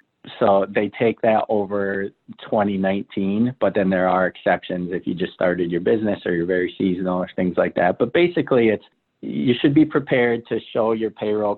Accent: American